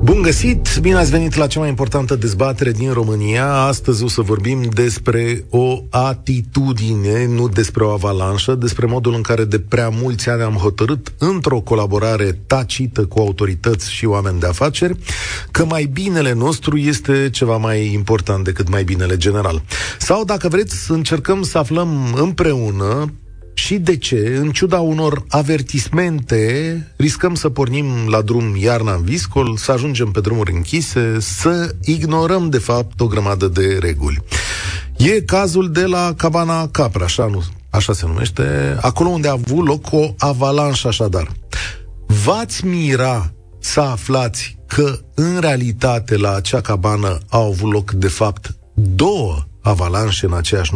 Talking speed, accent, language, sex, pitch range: 150 wpm, native, Romanian, male, 100-145 Hz